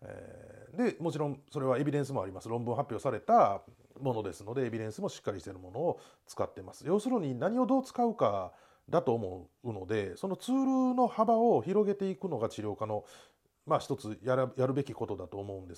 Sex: male